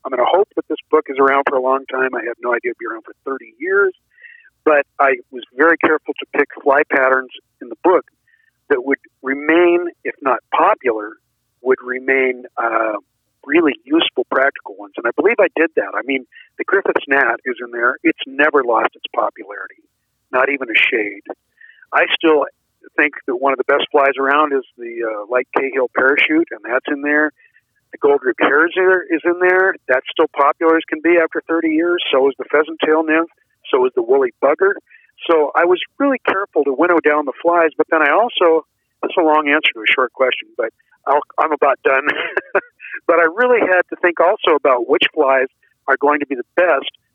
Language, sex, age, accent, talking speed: English, male, 50-69, American, 205 wpm